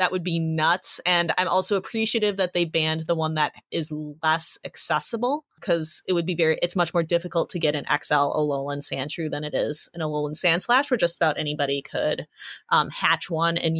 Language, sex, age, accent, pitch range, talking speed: English, female, 20-39, American, 160-185 Hz, 210 wpm